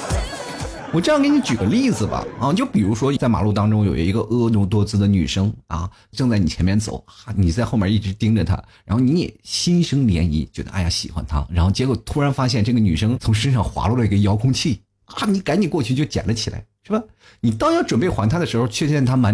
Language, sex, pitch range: Chinese, male, 95-130 Hz